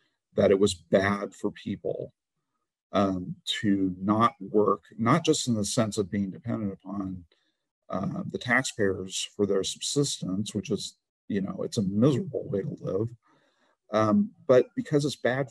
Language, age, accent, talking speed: English, 50-69, American, 155 wpm